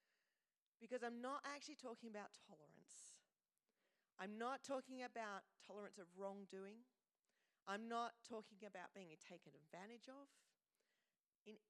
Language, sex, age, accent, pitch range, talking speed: English, female, 40-59, Australian, 200-255 Hz, 120 wpm